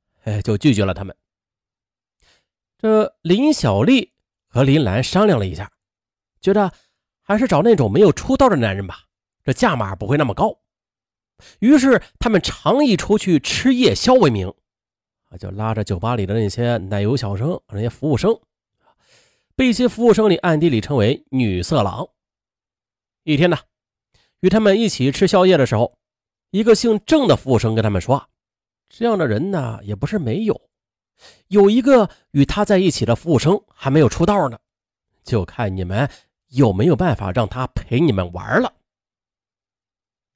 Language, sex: Chinese, male